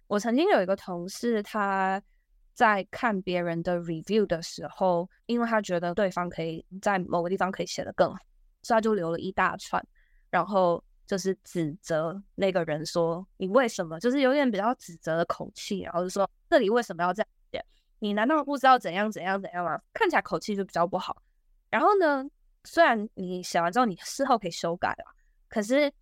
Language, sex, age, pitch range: Chinese, female, 10-29, 175-230 Hz